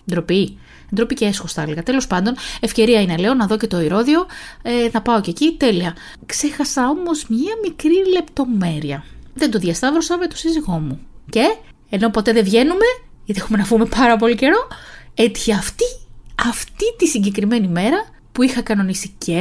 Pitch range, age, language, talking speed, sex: 200-260 Hz, 20-39, Greek, 170 wpm, female